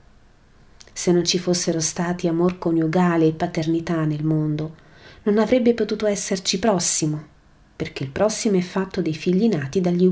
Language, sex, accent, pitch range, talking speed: Italian, female, native, 155-185 Hz, 150 wpm